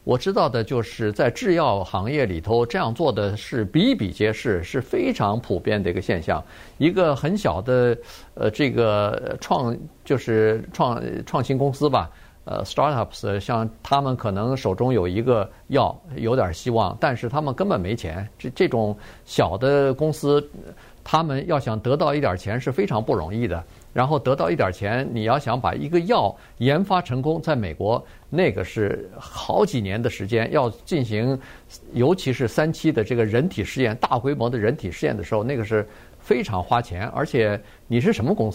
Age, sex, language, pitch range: 50-69, male, Chinese, 110-140 Hz